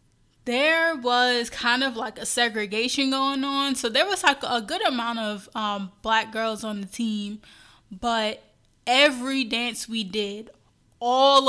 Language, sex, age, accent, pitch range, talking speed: English, female, 10-29, American, 215-240 Hz, 150 wpm